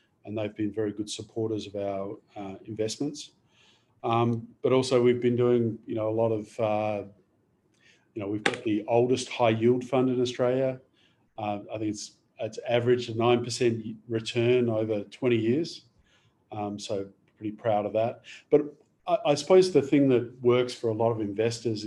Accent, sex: Australian, male